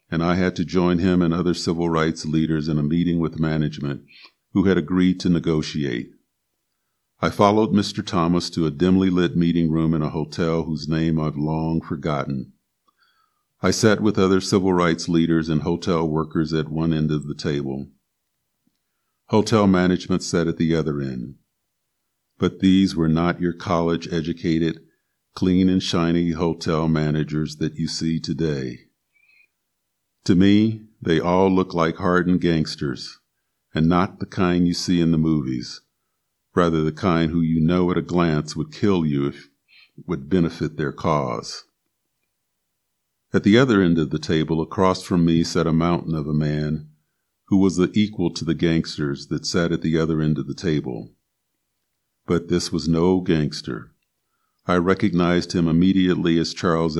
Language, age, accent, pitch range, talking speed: English, 50-69, American, 80-90 Hz, 160 wpm